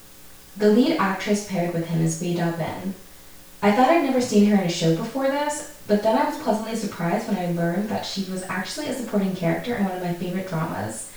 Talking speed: 230 wpm